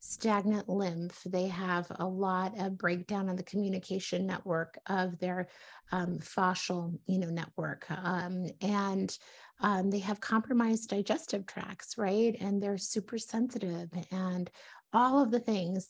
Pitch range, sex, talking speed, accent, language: 180-210 Hz, female, 140 wpm, American, English